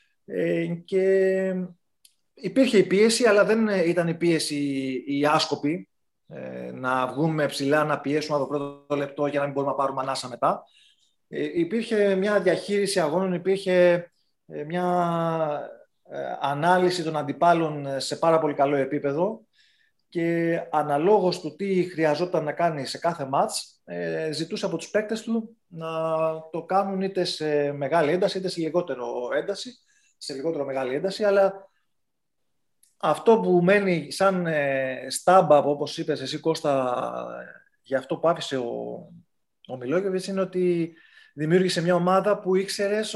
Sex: male